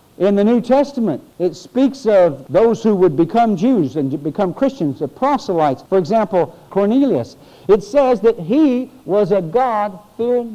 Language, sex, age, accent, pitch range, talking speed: English, male, 60-79, American, 160-225 Hz, 155 wpm